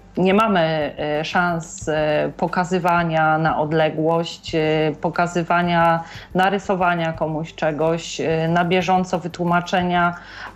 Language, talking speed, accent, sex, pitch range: Polish, 75 wpm, native, female, 160-185 Hz